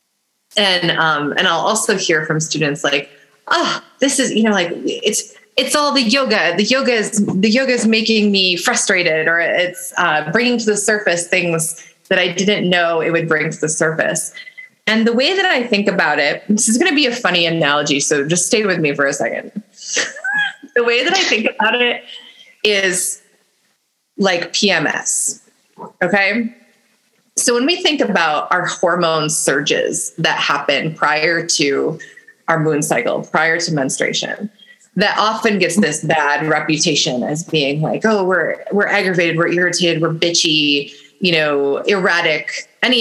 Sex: female